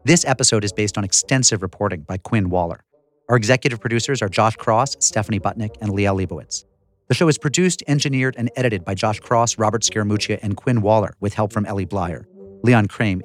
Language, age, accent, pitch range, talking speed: English, 40-59, American, 100-130 Hz, 195 wpm